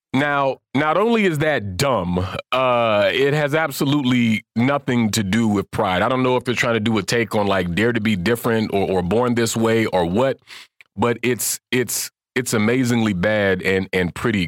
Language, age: English, 40-59